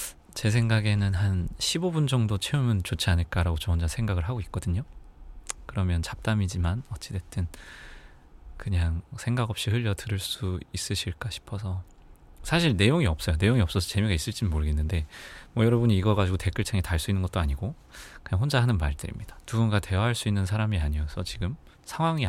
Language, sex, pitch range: Korean, male, 85-110 Hz